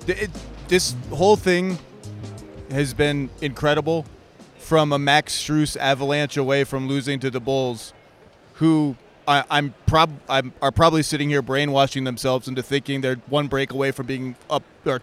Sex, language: male, English